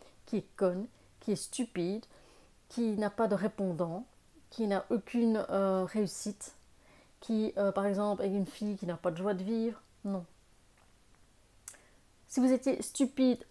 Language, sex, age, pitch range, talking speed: French, female, 30-49, 190-225 Hz, 155 wpm